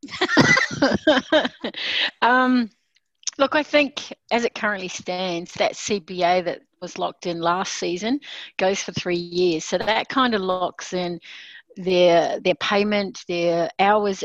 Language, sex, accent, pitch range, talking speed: English, female, Australian, 175-210 Hz, 130 wpm